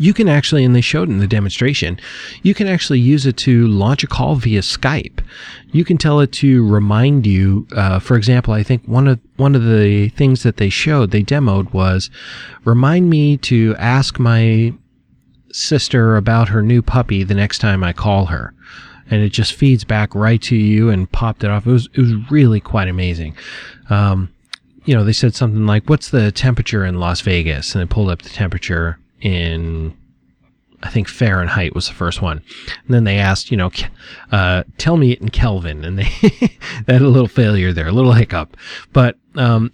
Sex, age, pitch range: male, 30-49, 95-125 Hz